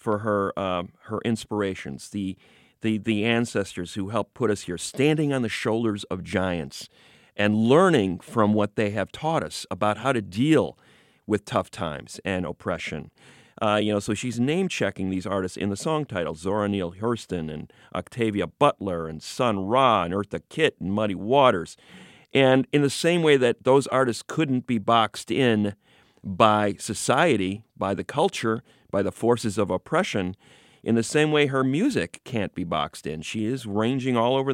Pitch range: 95-120 Hz